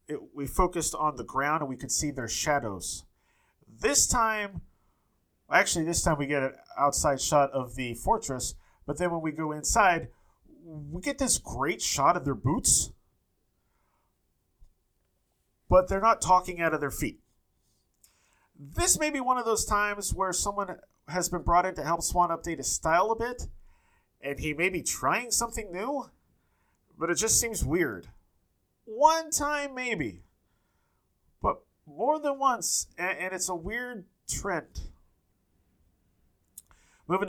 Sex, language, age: male, English, 30-49